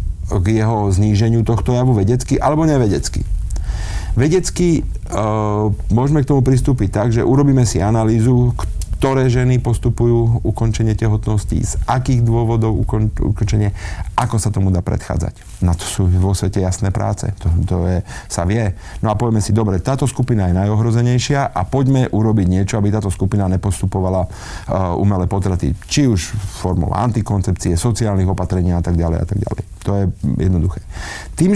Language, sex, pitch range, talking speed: Slovak, male, 95-115 Hz, 155 wpm